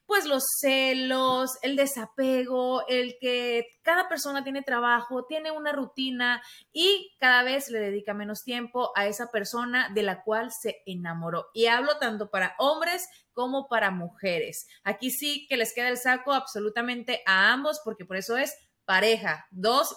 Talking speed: 160 wpm